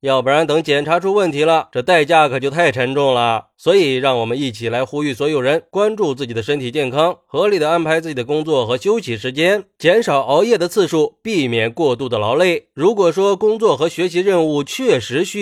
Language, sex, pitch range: Chinese, male, 140-190 Hz